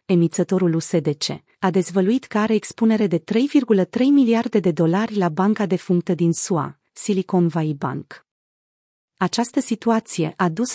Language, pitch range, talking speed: Romanian, 180-225 Hz, 140 wpm